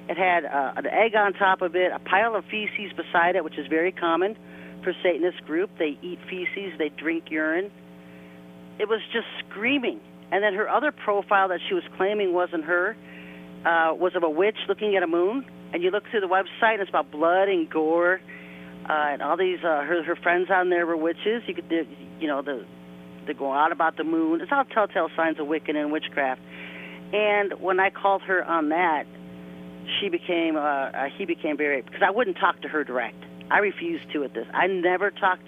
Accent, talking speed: American, 210 wpm